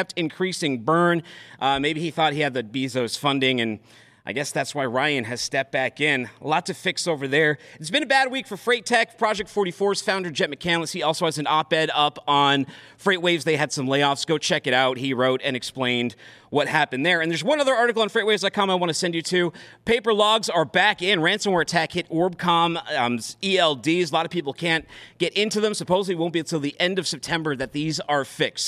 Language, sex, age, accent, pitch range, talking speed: English, male, 40-59, American, 150-200 Hz, 225 wpm